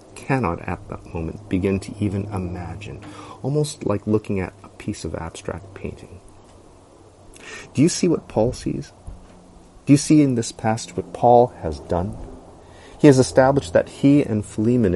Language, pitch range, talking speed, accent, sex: English, 80-115 Hz, 160 wpm, American, male